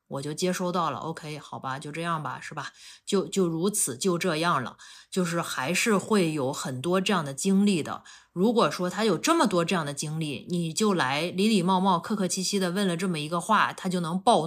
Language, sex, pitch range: Chinese, female, 150-195 Hz